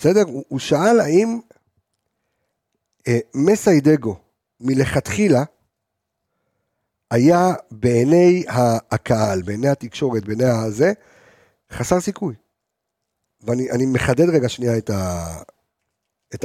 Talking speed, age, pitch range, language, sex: 85 wpm, 50-69, 120-180 Hz, Hebrew, male